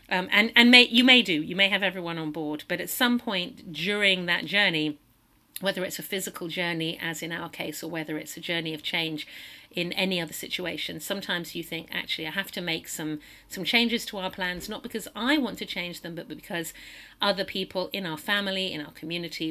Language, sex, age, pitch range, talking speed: English, female, 50-69, 160-195 Hz, 220 wpm